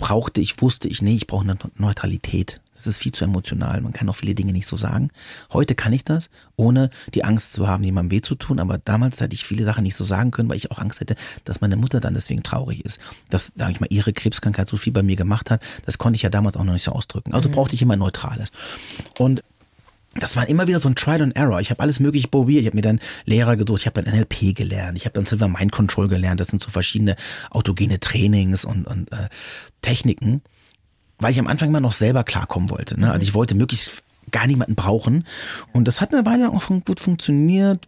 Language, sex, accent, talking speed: German, male, German, 240 wpm